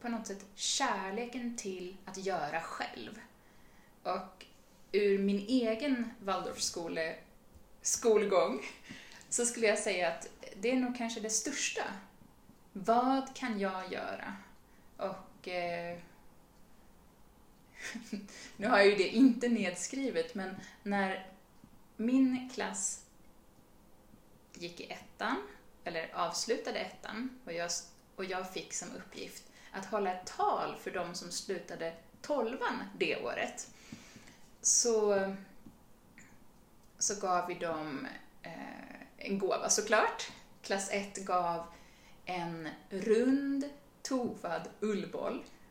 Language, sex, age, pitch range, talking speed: Swedish, female, 20-39, 185-240 Hz, 105 wpm